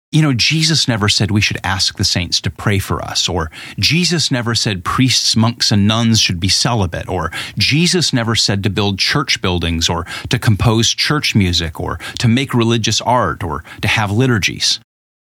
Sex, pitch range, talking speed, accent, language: male, 95-125 Hz, 185 wpm, American, English